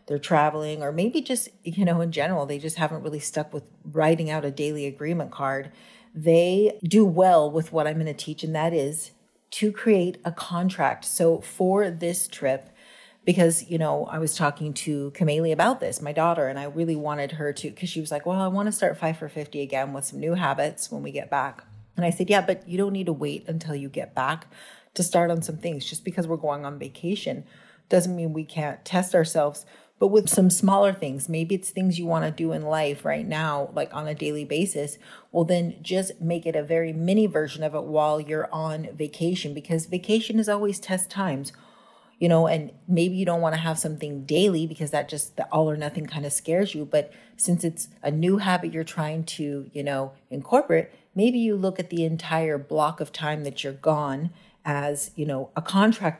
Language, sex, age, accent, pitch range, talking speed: English, female, 30-49, American, 150-180 Hz, 220 wpm